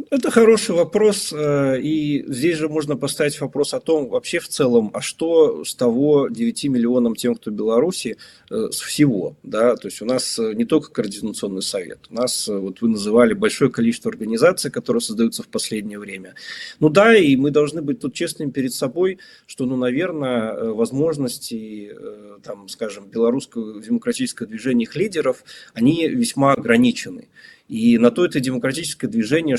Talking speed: 155 wpm